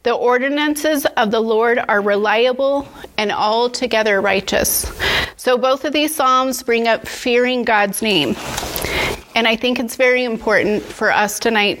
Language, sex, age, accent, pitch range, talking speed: English, female, 30-49, American, 220-255 Hz, 145 wpm